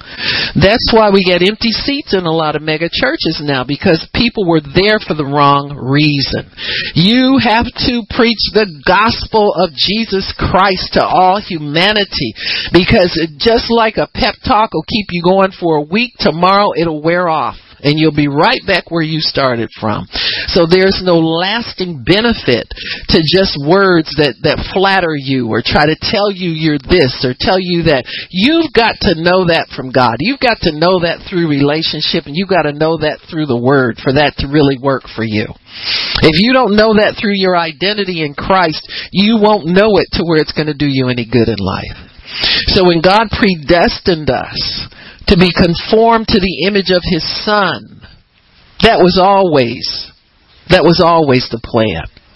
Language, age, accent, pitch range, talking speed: English, 50-69, American, 145-195 Hz, 185 wpm